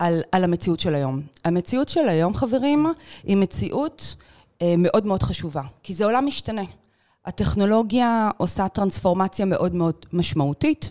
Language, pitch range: Hebrew, 170-230 Hz